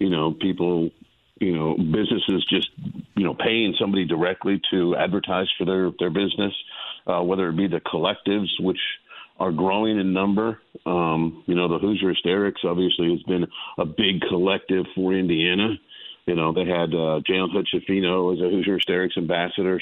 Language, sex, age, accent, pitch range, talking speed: English, male, 50-69, American, 85-100 Hz, 170 wpm